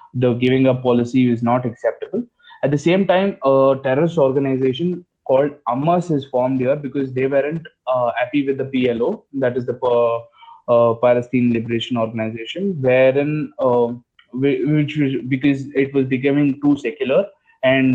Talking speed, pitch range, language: 145 wpm, 130-170 Hz, Hindi